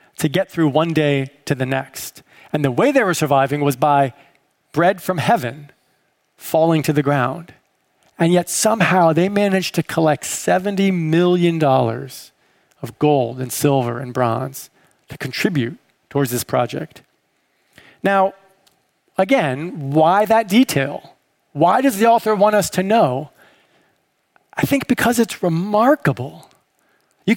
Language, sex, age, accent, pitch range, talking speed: English, male, 40-59, American, 145-200 Hz, 135 wpm